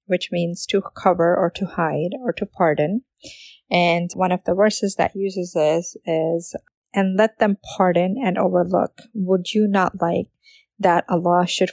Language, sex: English, female